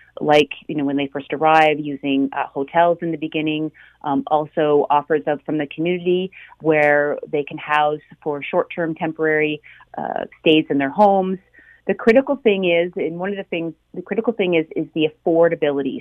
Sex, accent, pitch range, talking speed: female, American, 155-180 Hz, 185 wpm